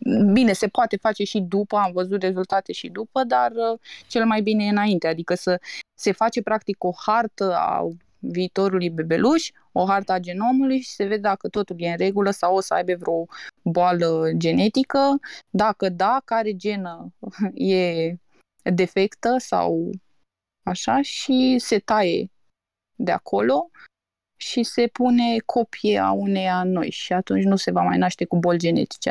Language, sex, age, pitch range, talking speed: Romanian, female, 20-39, 185-220 Hz, 155 wpm